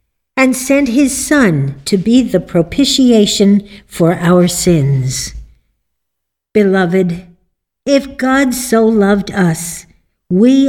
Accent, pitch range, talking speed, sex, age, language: American, 155-220 Hz, 100 wpm, female, 60-79, English